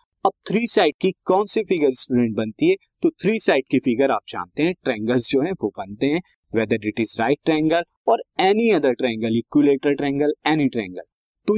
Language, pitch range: Hindi, 120-190 Hz